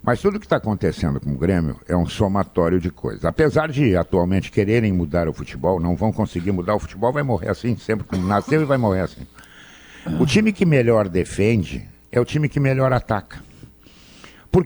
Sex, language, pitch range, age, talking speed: male, Portuguese, 90-145 Hz, 60-79, 195 wpm